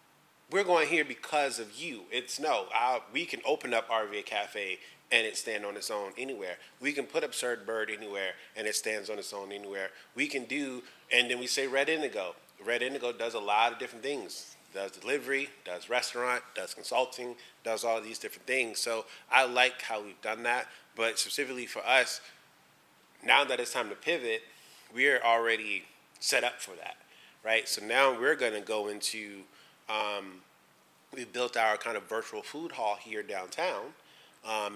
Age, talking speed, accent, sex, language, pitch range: 20-39, 185 wpm, American, male, English, 105-145 Hz